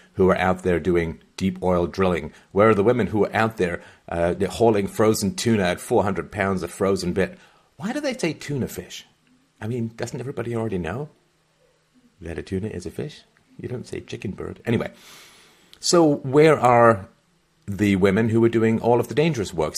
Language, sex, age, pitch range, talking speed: English, male, 50-69, 90-120 Hz, 190 wpm